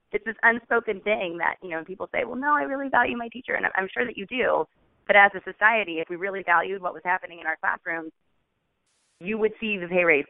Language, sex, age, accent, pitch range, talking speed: English, female, 20-39, American, 155-195 Hz, 245 wpm